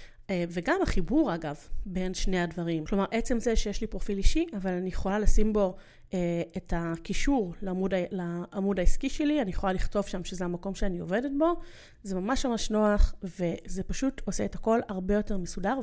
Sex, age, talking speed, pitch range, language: female, 30-49, 170 wpm, 185-225 Hz, Hebrew